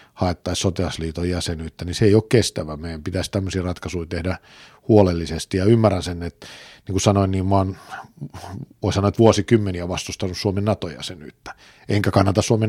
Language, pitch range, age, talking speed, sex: Finnish, 90-105 Hz, 50-69, 155 wpm, male